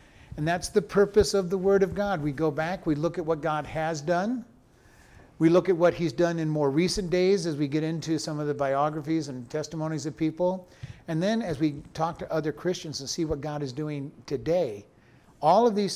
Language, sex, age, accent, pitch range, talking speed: English, male, 50-69, American, 145-195 Hz, 220 wpm